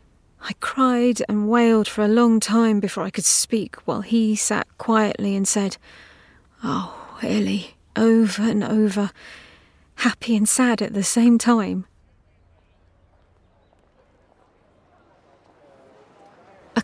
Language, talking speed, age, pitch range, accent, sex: English, 110 wpm, 30-49, 185-230 Hz, British, female